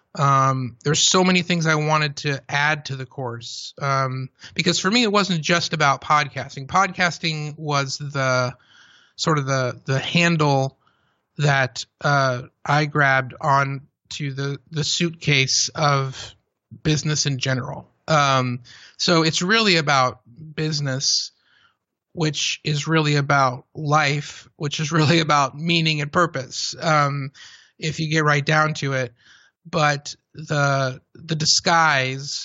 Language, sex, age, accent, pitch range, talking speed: English, male, 30-49, American, 135-155 Hz, 135 wpm